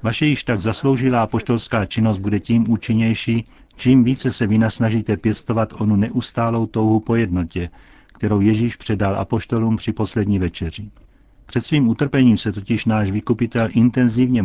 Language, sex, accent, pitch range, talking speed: Czech, male, native, 105-120 Hz, 140 wpm